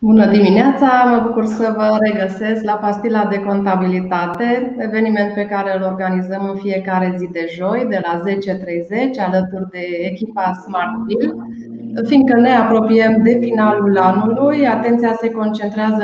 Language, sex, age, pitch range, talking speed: Romanian, female, 20-39, 190-230 Hz, 140 wpm